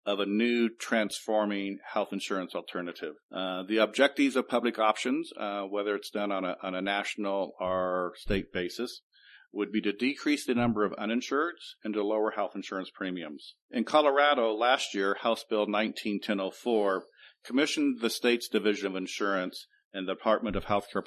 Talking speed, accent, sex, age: 160 wpm, American, male, 50-69